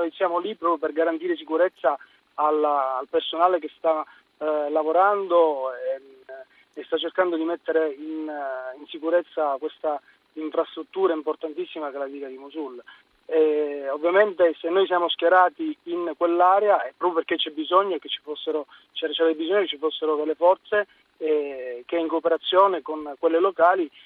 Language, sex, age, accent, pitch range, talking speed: Italian, male, 30-49, native, 150-175 Hz, 150 wpm